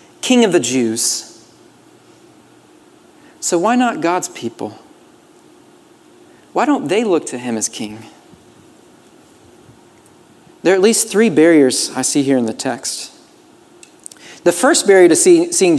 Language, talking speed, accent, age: English, 130 wpm, American, 40-59